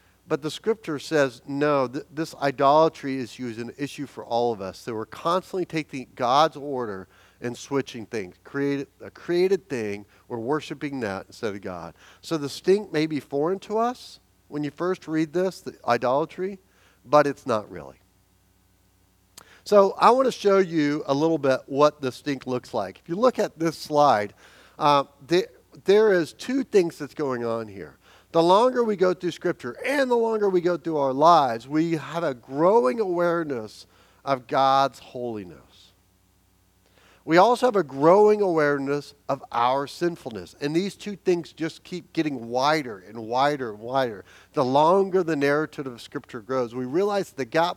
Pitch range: 115-170 Hz